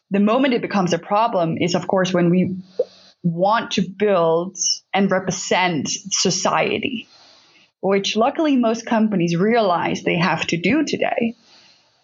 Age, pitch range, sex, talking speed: 20-39, 195-235 Hz, female, 135 wpm